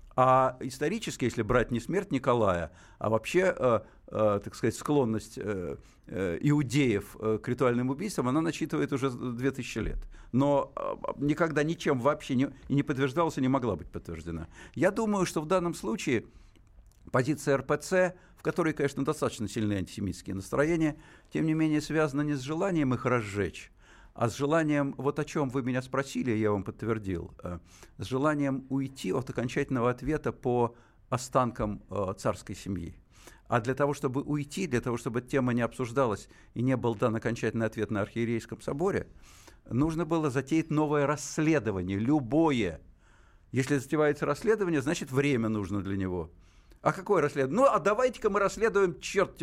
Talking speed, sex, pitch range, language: 155 wpm, male, 110-150 Hz, Russian